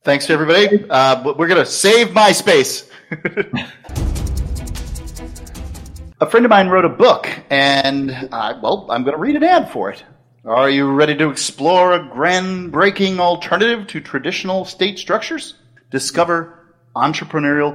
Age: 40-59